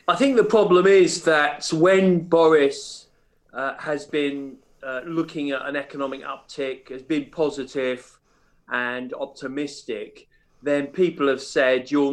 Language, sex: English, male